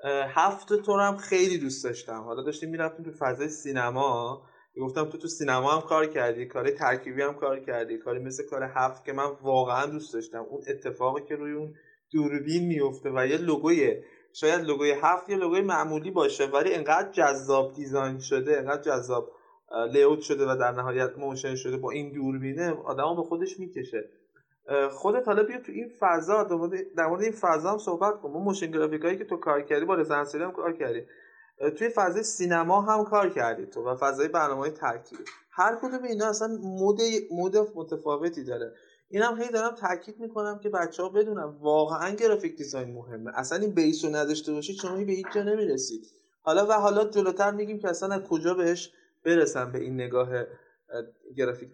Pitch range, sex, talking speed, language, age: 140-210 Hz, male, 175 wpm, Persian, 20-39